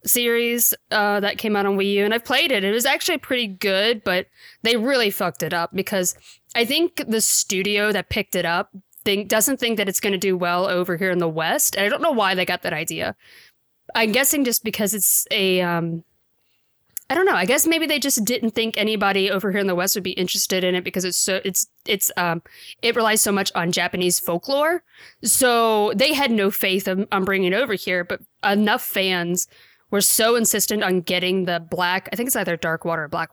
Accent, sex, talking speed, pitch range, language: American, female, 225 wpm, 185-240 Hz, English